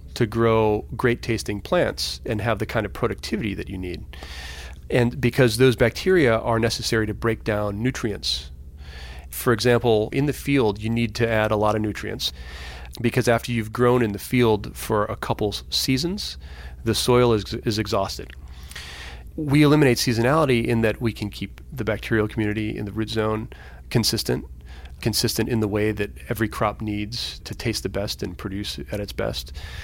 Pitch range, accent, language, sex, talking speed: 90-115 Hz, American, English, male, 175 wpm